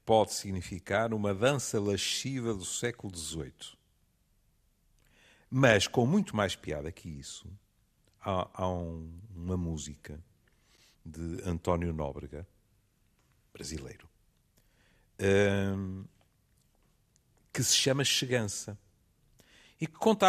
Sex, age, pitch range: male, 50-69, 90-135 Hz